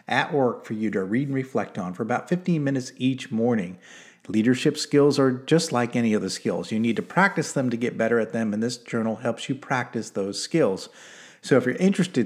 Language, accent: English, American